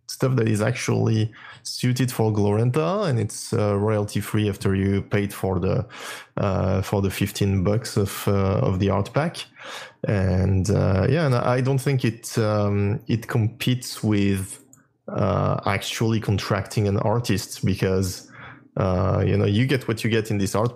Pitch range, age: 100-120 Hz, 20-39